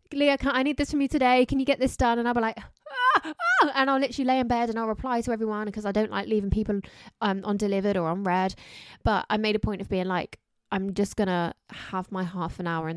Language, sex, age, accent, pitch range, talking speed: English, female, 20-39, British, 185-255 Hz, 270 wpm